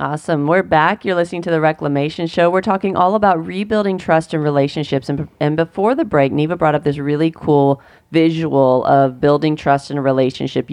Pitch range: 140-170 Hz